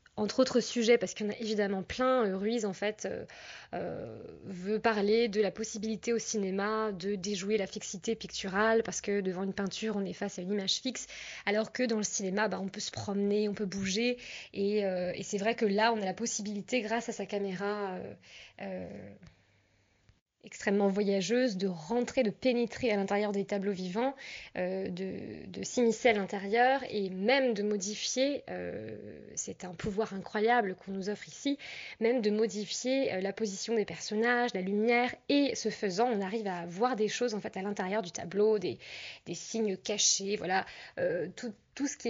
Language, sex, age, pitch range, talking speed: French, female, 20-39, 195-230 Hz, 190 wpm